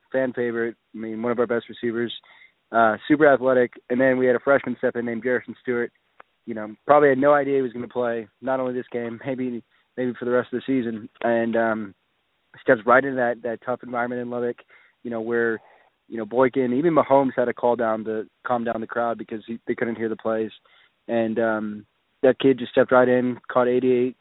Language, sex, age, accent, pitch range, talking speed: English, male, 20-39, American, 115-125 Hz, 225 wpm